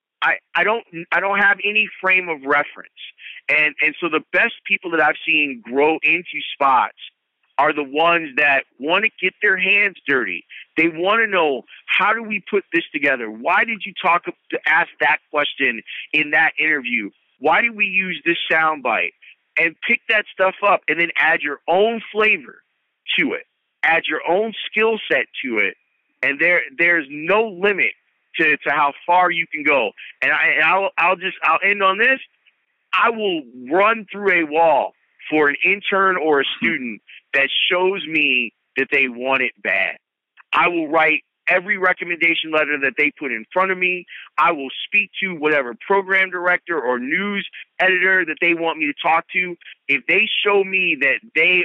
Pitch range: 155-200 Hz